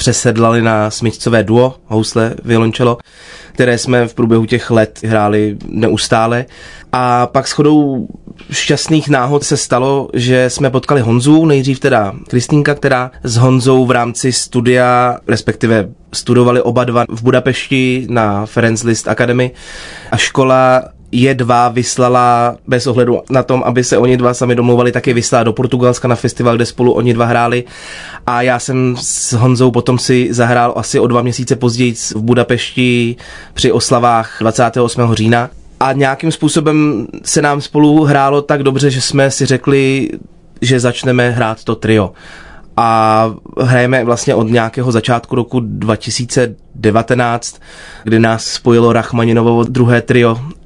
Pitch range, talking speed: 115-130 Hz, 145 wpm